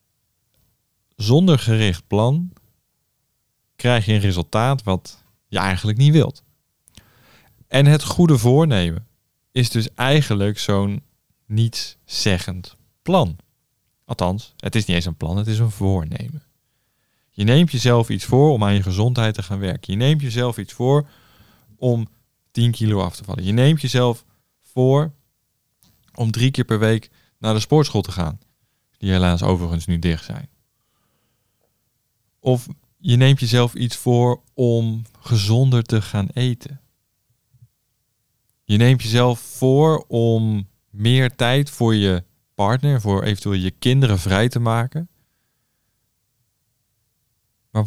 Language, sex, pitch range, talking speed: Dutch, male, 105-125 Hz, 130 wpm